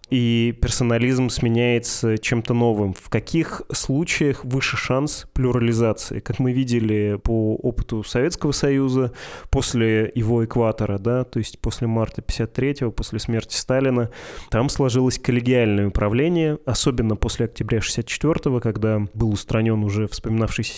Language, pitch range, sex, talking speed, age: Russian, 110-125 Hz, male, 125 wpm, 20-39